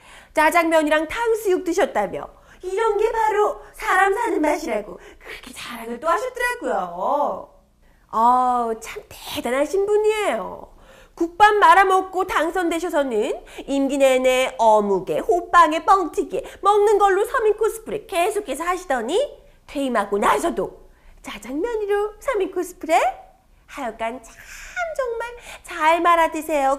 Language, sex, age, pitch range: Korean, female, 30-49, 300-410 Hz